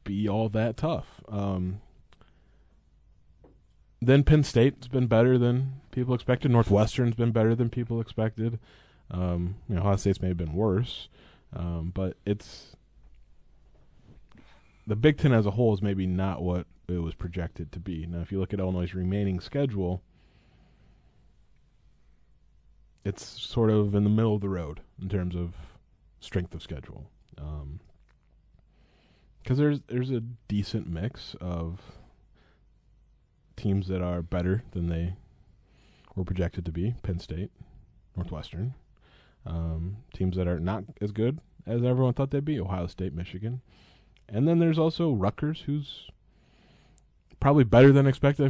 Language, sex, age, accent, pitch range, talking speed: English, male, 20-39, American, 90-120 Hz, 140 wpm